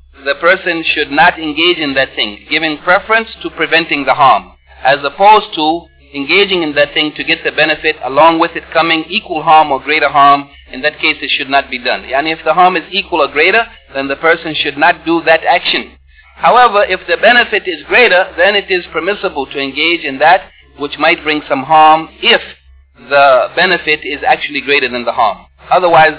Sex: male